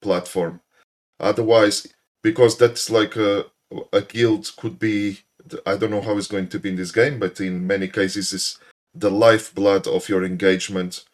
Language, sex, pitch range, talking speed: English, male, 95-110 Hz, 165 wpm